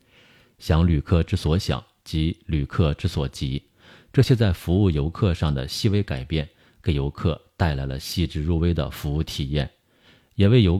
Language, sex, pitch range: Chinese, male, 75-105 Hz